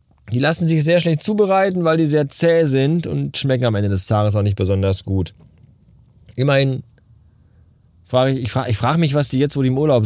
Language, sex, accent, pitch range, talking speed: German, male, German, 105-160 Hz, 205 wpm